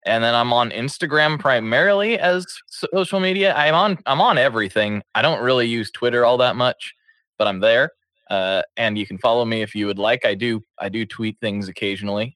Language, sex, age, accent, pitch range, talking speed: English, male, 20-39, American, 105-130 Hz, 205 wpm